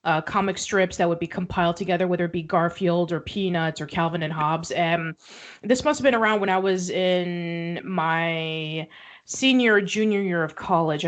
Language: English